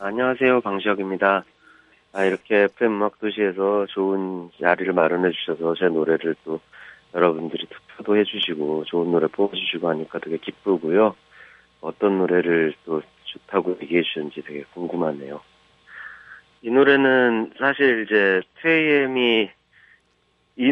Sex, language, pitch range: male, Korean, 85-110 Hz